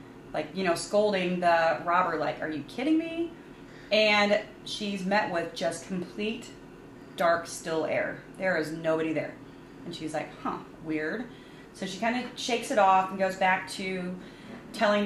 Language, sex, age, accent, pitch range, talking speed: English, female, 30-49, American, 165-195 Hz, 165 wpm